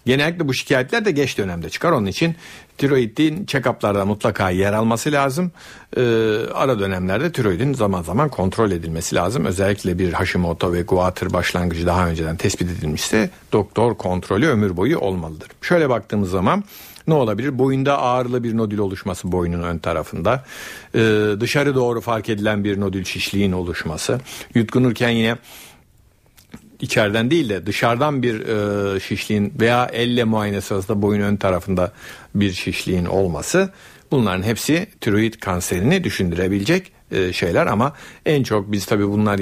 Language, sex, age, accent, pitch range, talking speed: Turkish, male, 60-79, native, 95-125 Hz, 135 wpm